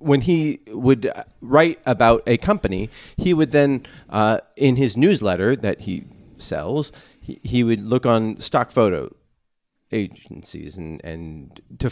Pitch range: 100-130 Hz